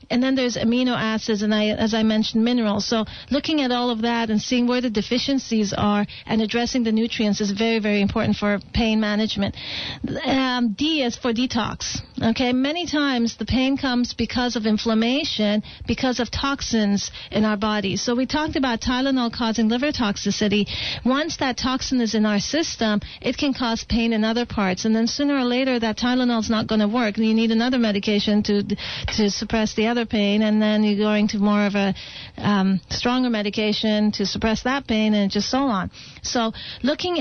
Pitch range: 215-245 Hz